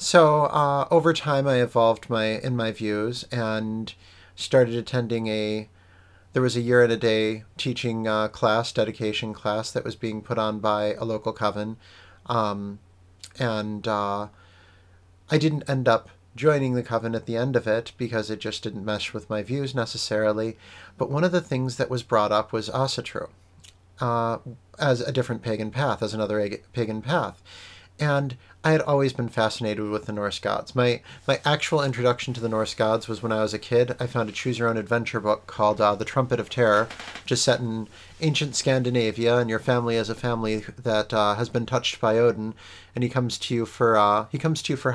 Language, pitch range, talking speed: English, 105-125 Hz, 200 wpm